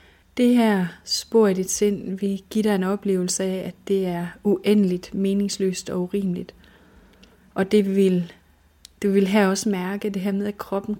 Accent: native